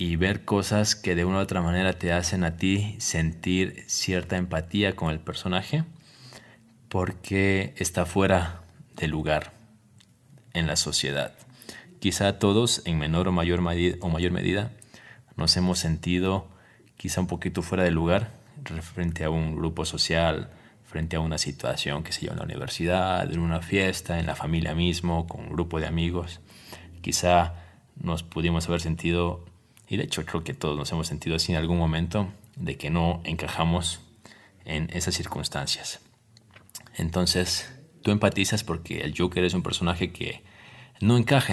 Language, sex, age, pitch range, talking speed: Spanish, male, 30-49, 85-110 Hz, 160 wpm